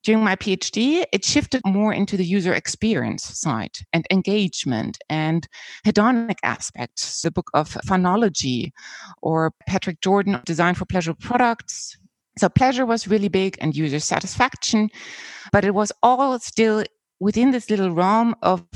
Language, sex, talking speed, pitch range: English, female, 145 wpm, 175-240 Hz